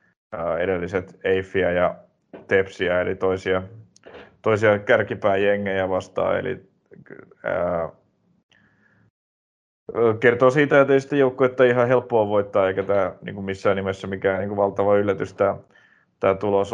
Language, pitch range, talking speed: Finnish, 95-110 Hz, 120 wpm